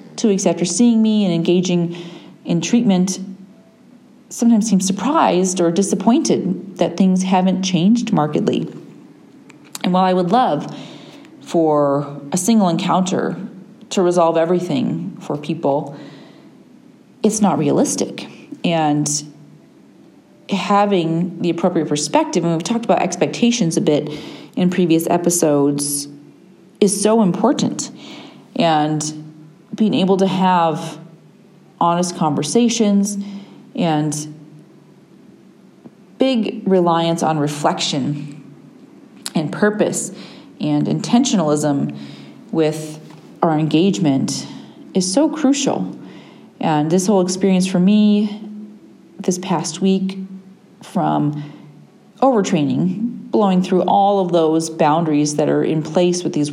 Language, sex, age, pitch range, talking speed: English, female, 40-59, 155-205 Hz, 105 wpm